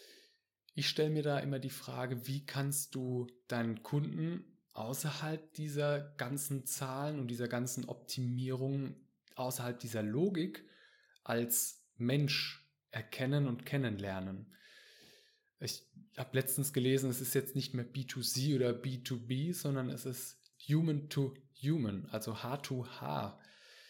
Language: German